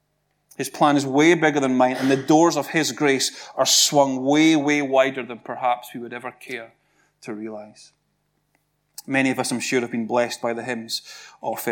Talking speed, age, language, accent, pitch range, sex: 195 wpm, 30-49, English, British, 125-150 Hz, male